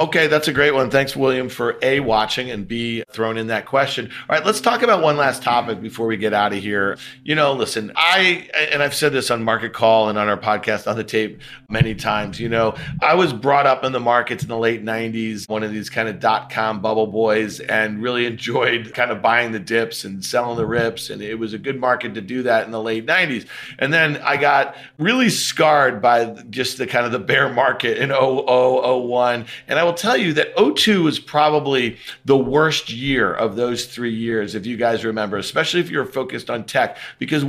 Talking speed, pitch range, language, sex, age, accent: 225 wpm, 115-150 Hz, English, male, 40-59, American